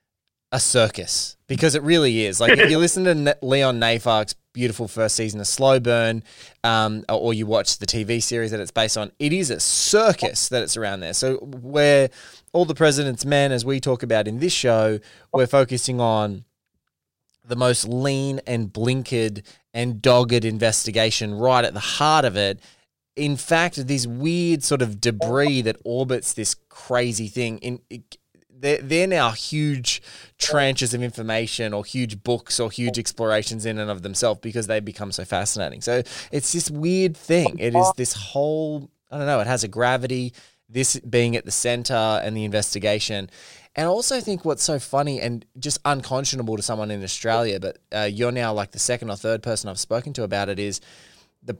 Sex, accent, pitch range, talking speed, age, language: male, Australian, 110-140 Hz, 185 wpm, 20-39, English